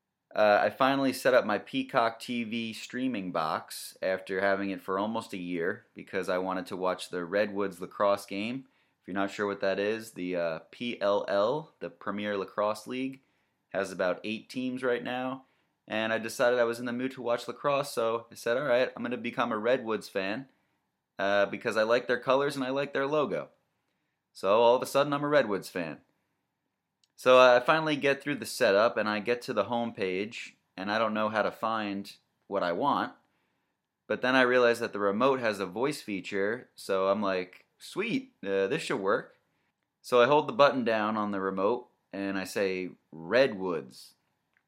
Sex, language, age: male, English, 30-49